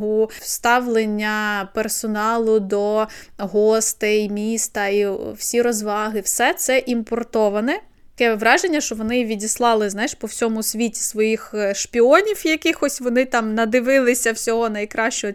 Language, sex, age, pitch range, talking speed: Ukrainian, female, 20-39, 215-250 Hz, 105 wpm